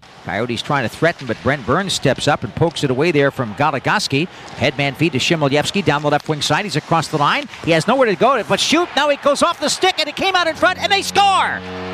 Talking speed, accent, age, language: 260 wpm, American, 50-69, English